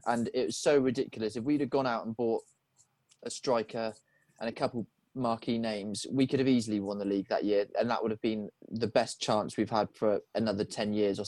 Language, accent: English, British